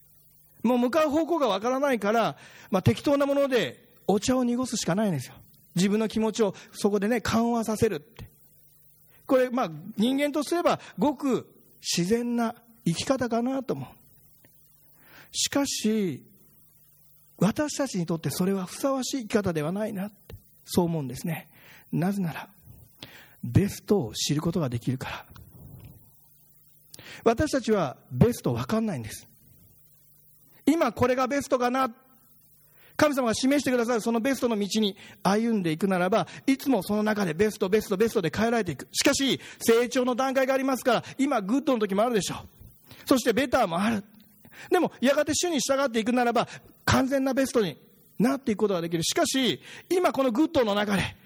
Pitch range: 155-255 Hz